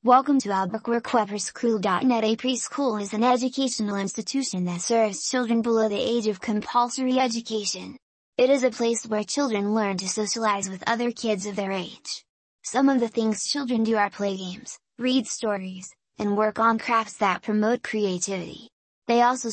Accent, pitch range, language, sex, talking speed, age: American, 200-235 Hz, English, female, 165 wpm, 20-39